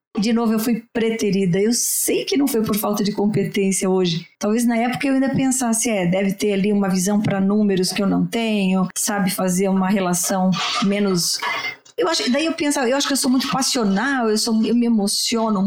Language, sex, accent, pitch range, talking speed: Portuguese, female, Brazilian, 200-240 Hz, 200 wpm